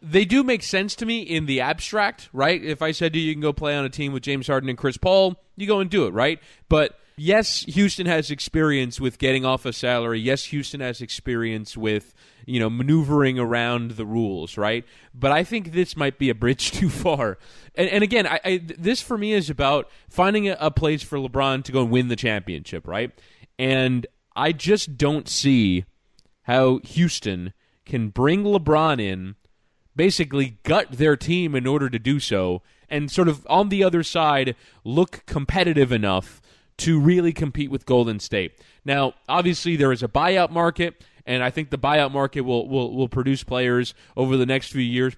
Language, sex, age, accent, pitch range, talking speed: English, male, 20-39, American, 120-160 Hz, 195 wpm